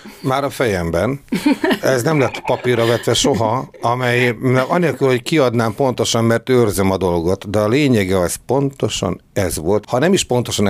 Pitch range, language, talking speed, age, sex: 115-165 Hz, Hungarian, 165 wpm, 60-79, male